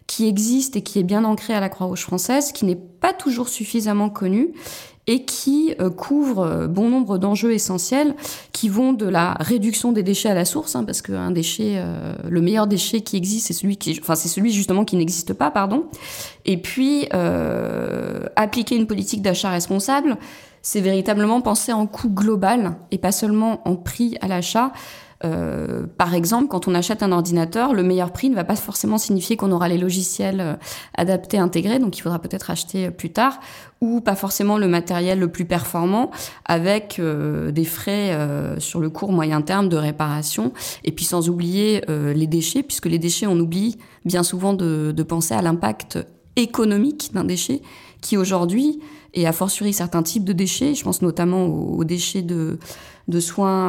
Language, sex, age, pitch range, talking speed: French, female, 20-39, 175-220 Hz, 185 wpm